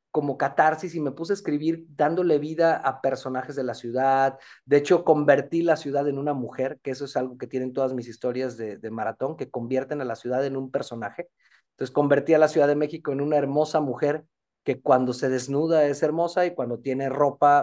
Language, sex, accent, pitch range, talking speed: Spanish, male, Mexican, 130-170 Hz, 215 wpm